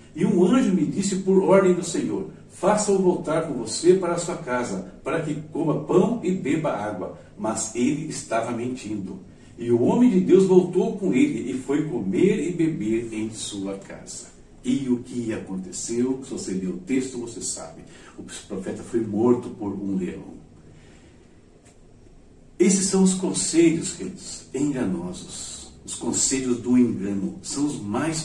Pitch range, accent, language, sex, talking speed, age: 115-180 Hz, Brazilian, Portuguese, male, 160 wpm, 60-79